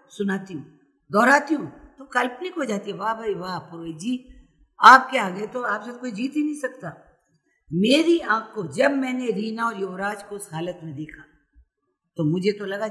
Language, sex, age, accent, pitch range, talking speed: Hindi, female, 50-69, native, 180-250 Hz, 180 wpm